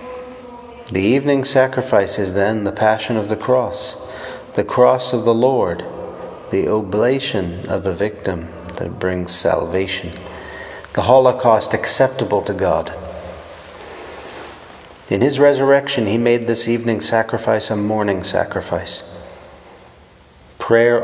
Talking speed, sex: 115 wpm, male